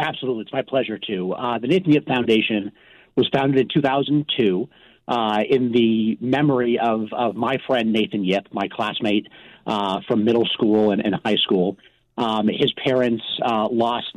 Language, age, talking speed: English, 40-59, 165 wpm